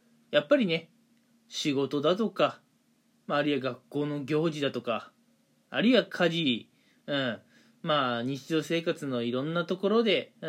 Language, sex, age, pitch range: Japanese, male, 20-39, 155-240 Hz